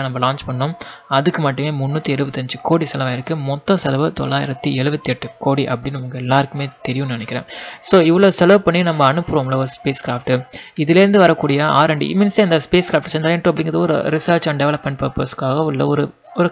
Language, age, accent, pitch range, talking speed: Tamil, 20-39, native, 140-185 Hz, 160 wpm